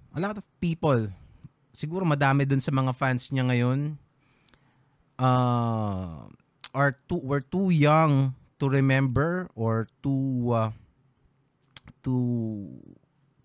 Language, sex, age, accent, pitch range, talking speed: Filipino, male, 20-39, native, 115-140 Hz, 105 wpm